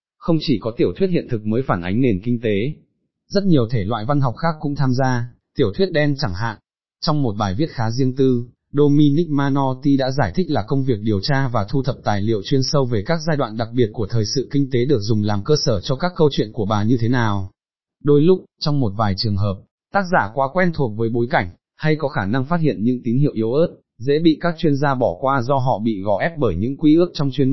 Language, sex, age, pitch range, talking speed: Vietnamese, male, 20-39, 115-145 Hz, 265 wpm